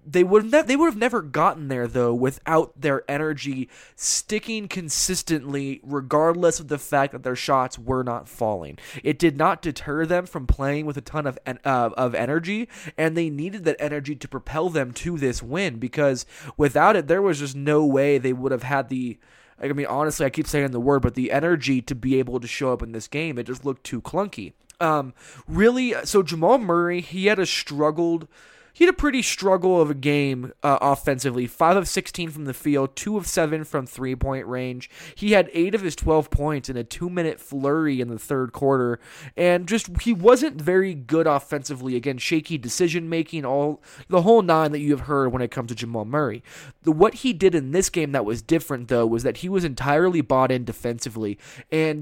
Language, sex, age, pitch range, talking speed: English, male, 20-39, 130-170 Hz, 205 wpm